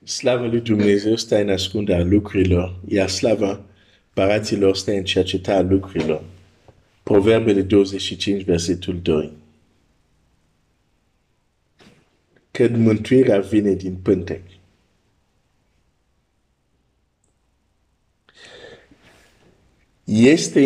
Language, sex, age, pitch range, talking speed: Romanian, male, 50-69, 95-110 Hz, 70 wpm